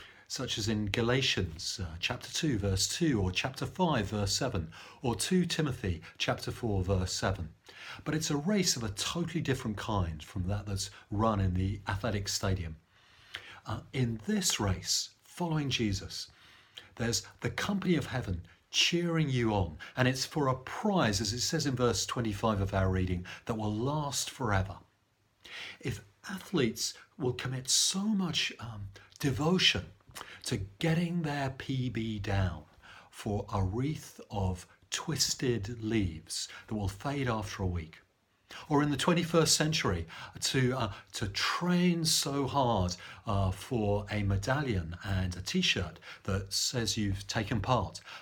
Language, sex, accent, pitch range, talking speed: English, male, British, 100-140 Hz, 145 wpm